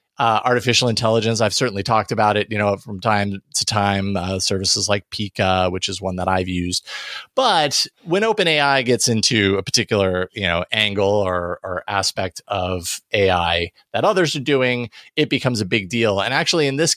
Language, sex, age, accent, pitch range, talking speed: English, male, 30-49, American, 95-125 Hz, 180 wpm